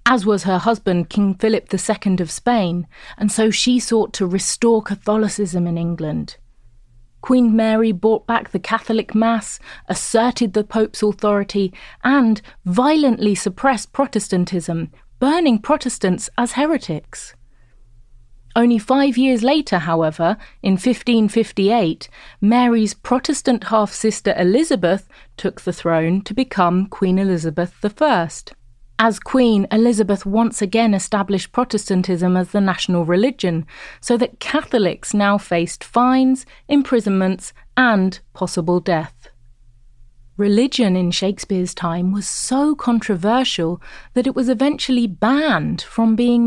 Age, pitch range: 30-49, 180-240 Hz